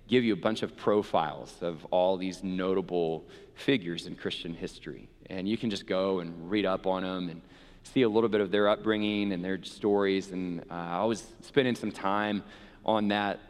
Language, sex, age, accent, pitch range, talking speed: English, male, 30-49, American, 90-105 Hz, 195 wpm